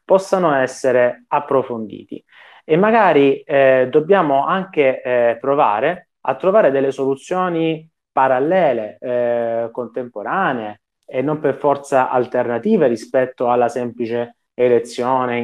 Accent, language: native, Italian